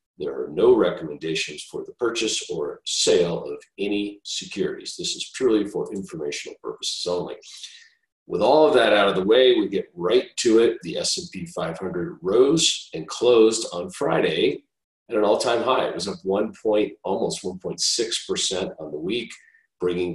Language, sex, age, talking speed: English, male, 40-59, 160 wpm